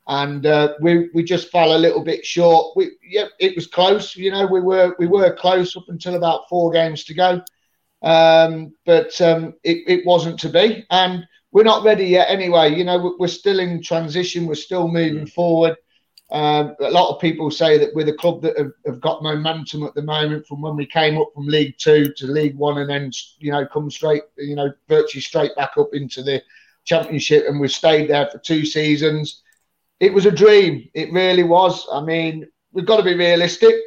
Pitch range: 155-180 Hz